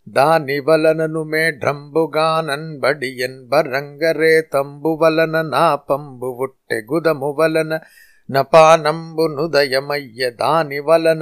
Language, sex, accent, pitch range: Telugu, male, native, 140-165 Hz